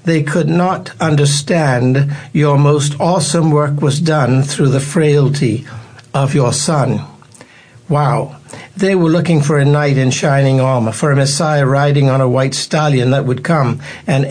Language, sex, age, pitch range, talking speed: English, male, 60-79, 135-165 Hz, 160 wpm